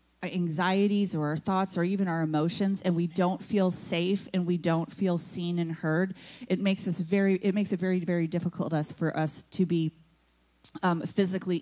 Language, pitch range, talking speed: English, 175-205 Hz, 195 wpm